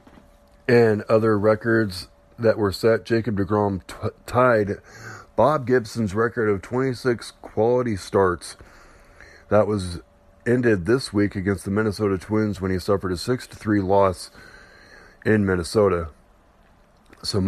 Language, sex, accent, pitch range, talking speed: English, male, American, 100-125 Hz, 115 wpm